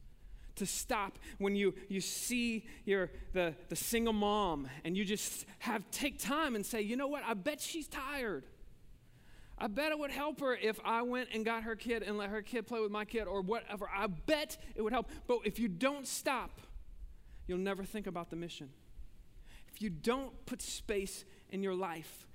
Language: English